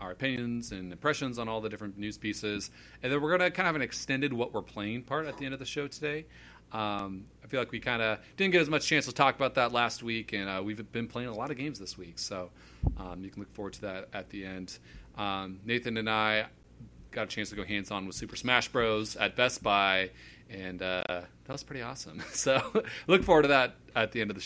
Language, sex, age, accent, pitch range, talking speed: English, male, 30-49, American, 95-125 Hz, 255 wpm